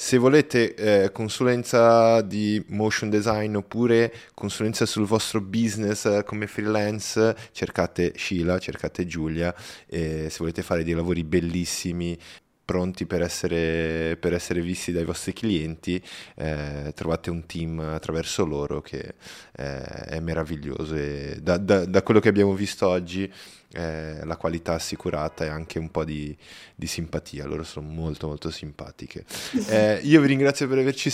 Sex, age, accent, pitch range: male, 20-39, native, 85-115 Hz